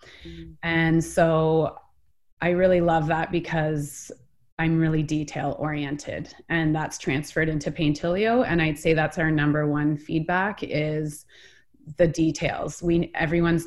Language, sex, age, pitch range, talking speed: English, female, 30-49, 150-170 Hz, 125 wpm